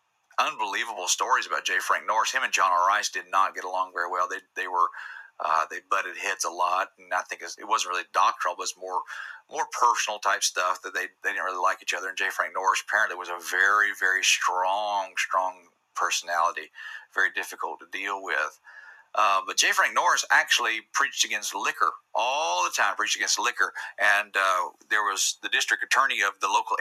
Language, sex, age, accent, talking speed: English, male, 40-59, American, 210 wpm